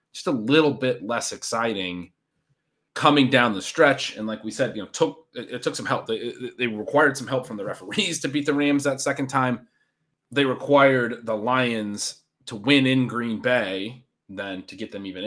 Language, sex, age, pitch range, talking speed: English, male, 30-49, 105-145 Hz, 205 wpm